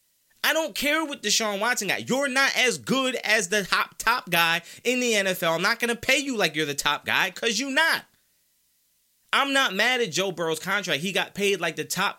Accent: American